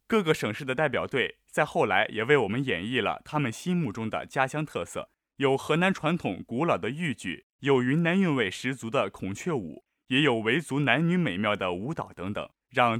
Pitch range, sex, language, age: 115-160 Hz, male, Chinese, 20-39